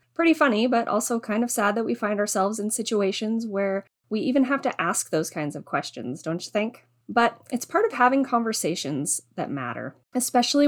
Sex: female